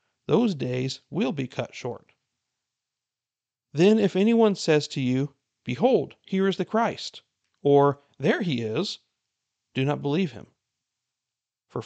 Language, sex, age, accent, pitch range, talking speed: English, male, 40-59, American, 120-155 Hz, 130 wpm